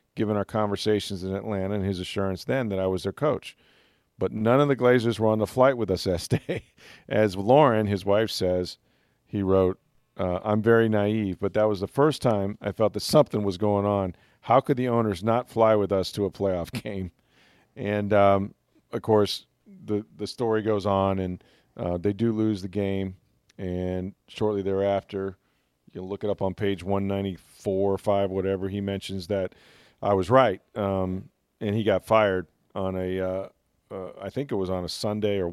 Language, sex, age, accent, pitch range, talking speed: English, male, 40-59, American, 95-115 Hz, 195 wpm